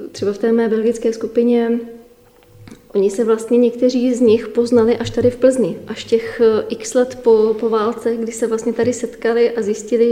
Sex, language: female, Czech